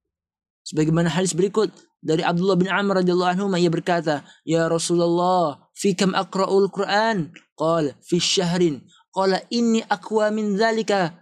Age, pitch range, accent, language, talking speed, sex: 20-39, 155-190 Hz, native, Indonesian, 120 wpm, male